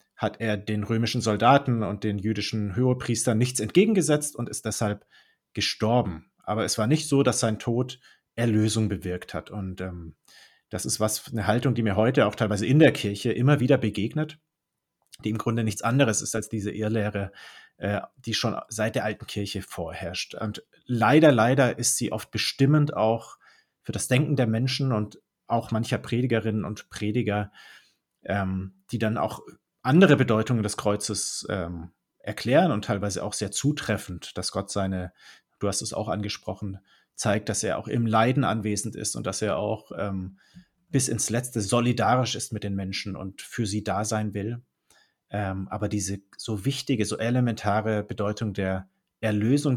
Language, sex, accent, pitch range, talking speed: German, male, German, 105-125 Hz, 170 wpm